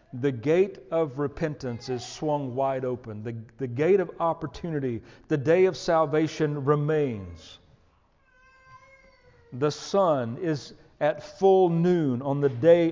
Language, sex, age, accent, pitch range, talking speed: English, male, 50-69, American, 135-175 Hz, 125 wpm